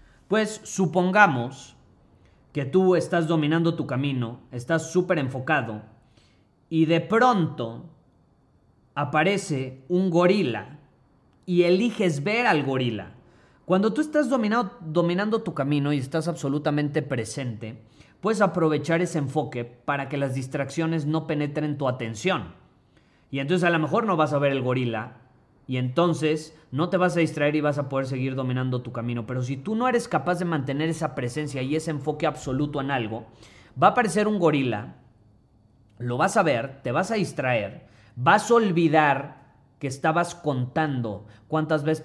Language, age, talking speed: Spanish, 30-49, 155 wpm